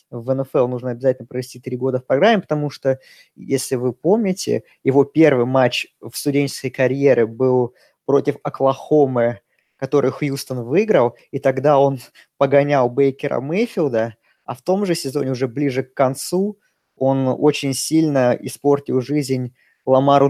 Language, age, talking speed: Russian, 20-39, 140 wpm